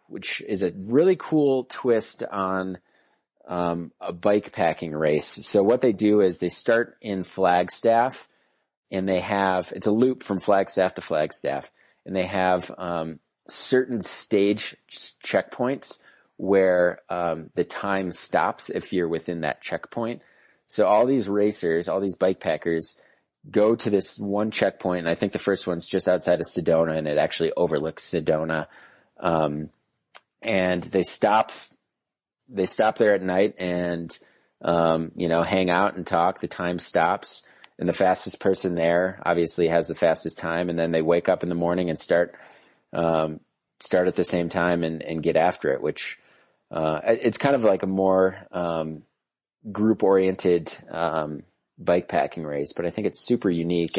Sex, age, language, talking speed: male, 30-49, English, 165 wpm